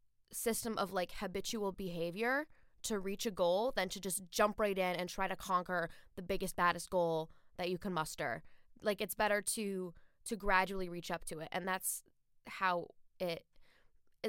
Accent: American